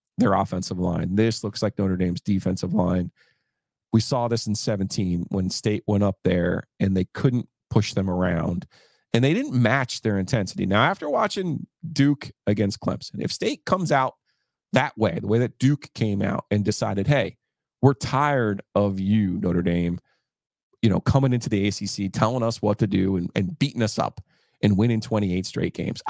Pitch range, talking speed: 95-115 Hz, 185 wpm